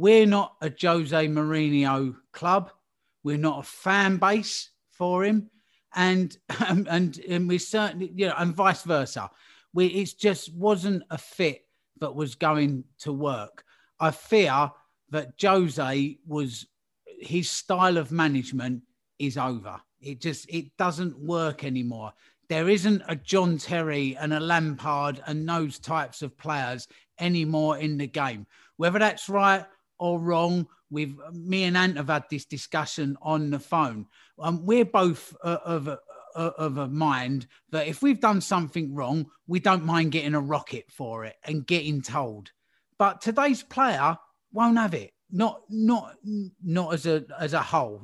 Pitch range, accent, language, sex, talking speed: 145-185 Hz, British, English, male, 155 wpm